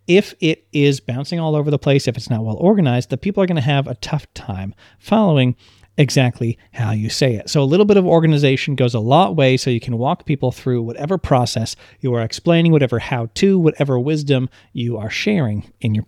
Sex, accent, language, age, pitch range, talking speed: male, American, English, 40-59, 120-160 Hz, 215 wpm